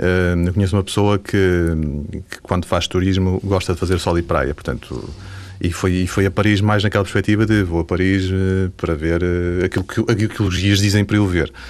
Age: 30-49